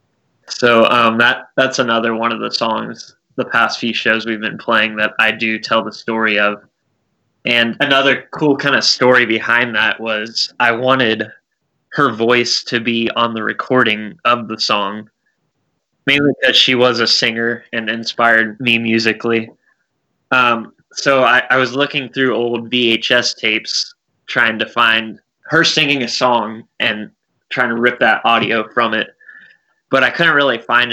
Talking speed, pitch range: 160 wpm, 110-125 Hz